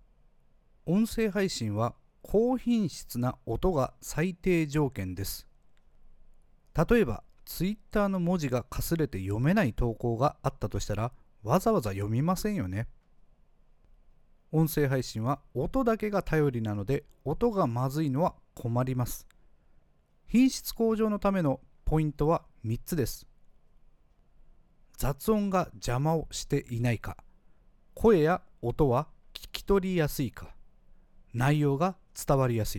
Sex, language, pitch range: male, Japanese, 120-185 Hz